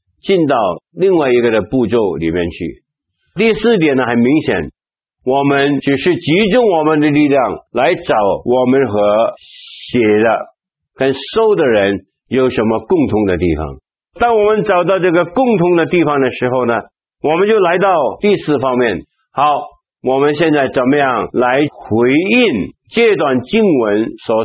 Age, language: 60-79, Chinese